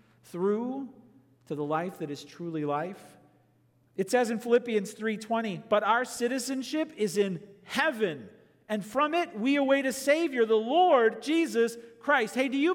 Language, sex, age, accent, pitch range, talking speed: English, male, 40-59, American, 205-260 Hz, 155 wpm